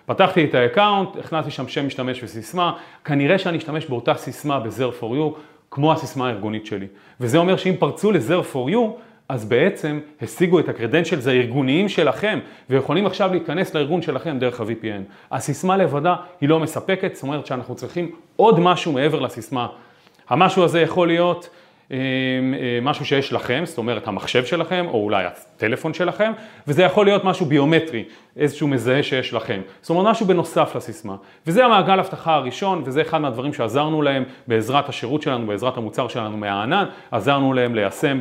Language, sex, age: Hebrew, male, 30-49